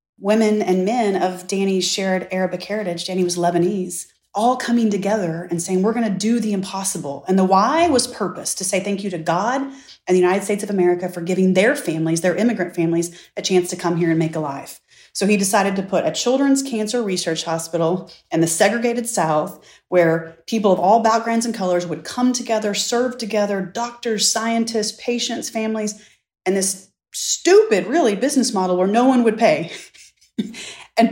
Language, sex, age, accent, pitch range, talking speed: English, female, 30-49, American, 180-220 Hz, 185 wpm